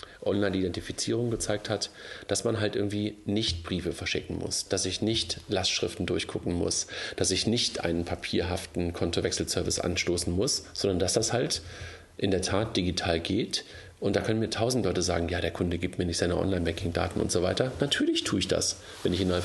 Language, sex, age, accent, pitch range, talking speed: German, male, 40-59, German, 90-105 Hz, 180 wpm